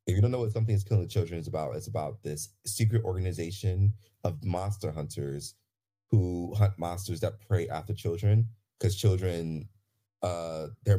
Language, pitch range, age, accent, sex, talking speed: English, 85-105 Hz, 30-49, American, male, 165 wpm